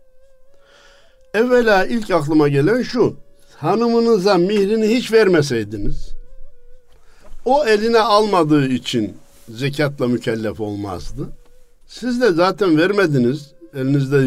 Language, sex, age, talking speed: Turkish, male, 60-79, 90 wpm